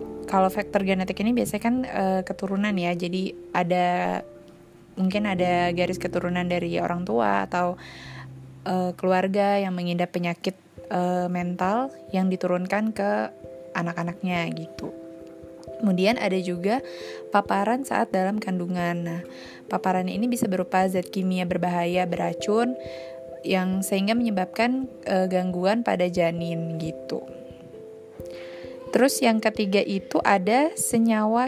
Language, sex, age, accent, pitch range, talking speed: Indonesian, female, 20-39, native, 175-205 Hz, 115 wpm